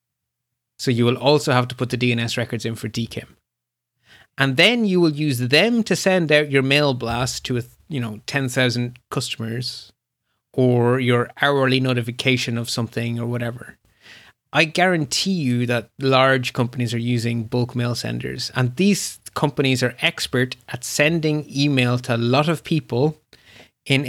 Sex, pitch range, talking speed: male, 120-145 Hz, 155 wpm